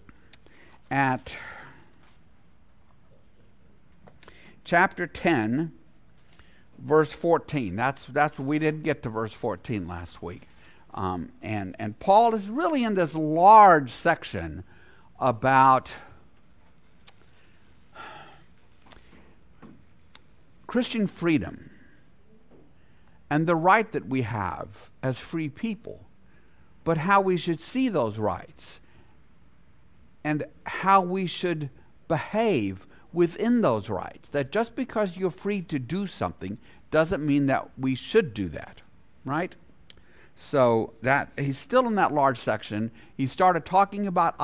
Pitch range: 115-180 Hz